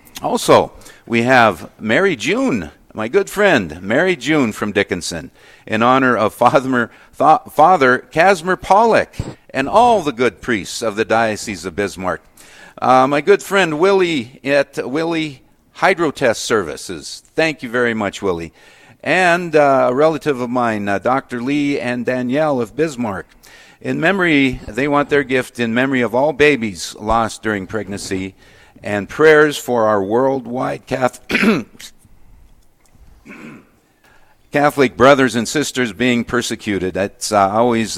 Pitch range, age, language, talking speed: 110-145 Hz, 50-69, English, 135 wpm